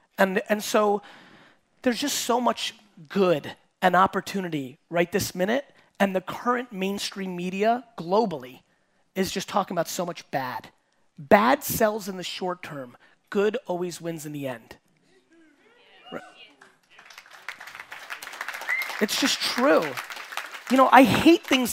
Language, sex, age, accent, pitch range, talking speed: English, male, 30-49, American, 180-245 Hz, 125 wpm